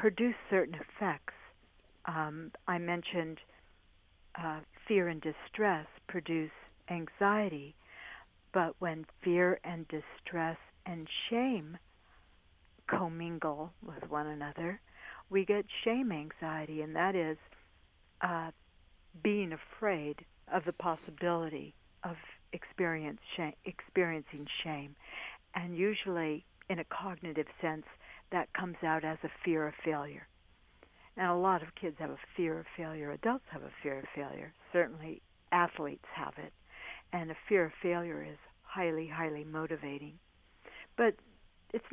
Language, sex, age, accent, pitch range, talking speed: English, female, 60-79, American, 155-180 Hz, 125 wpm